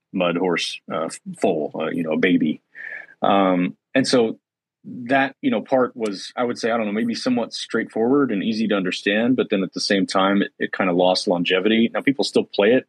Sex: male